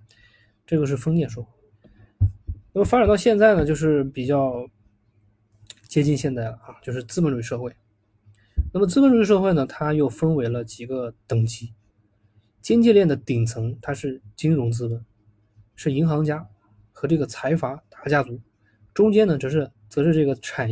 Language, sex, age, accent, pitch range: Chinese, male, 20-39, native, 105-145 Hz